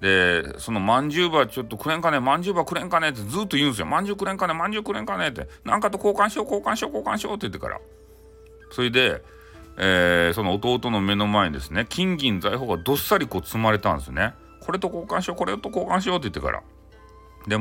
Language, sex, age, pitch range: Japanese, male, 40-59, 90-140 Hz